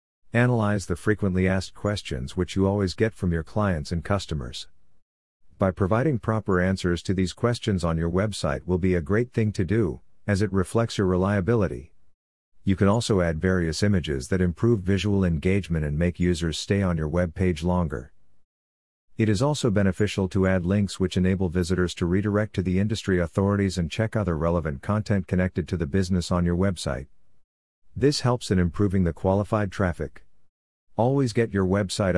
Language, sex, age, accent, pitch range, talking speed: English, male, 50-69, American, 85-100 Hz, 175 wpm